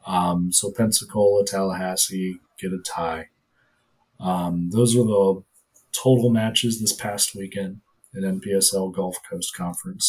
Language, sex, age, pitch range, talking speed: English, male, 30-49, 90-110 Hz, 125 wpm